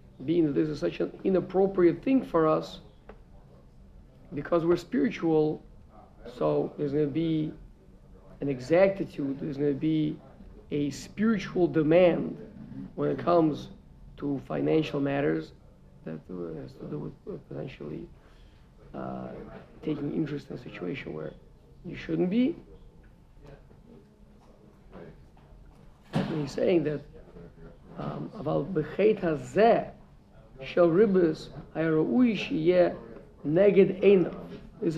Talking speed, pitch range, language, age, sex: 105 wpm, 150-205 Hz, English, 50-69, male